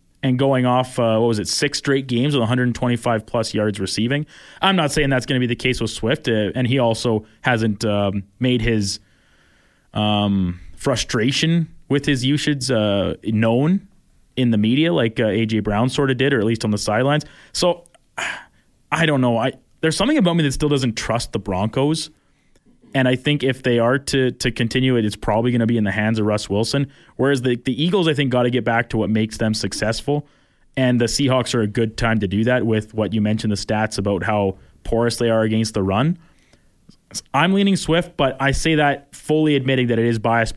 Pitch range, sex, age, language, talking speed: 110-135 Hz, male, 20-39, English, 215 wpm